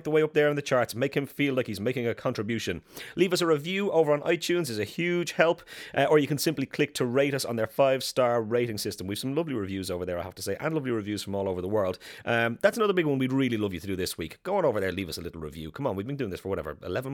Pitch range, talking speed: 90-135 Hz, 320 wpm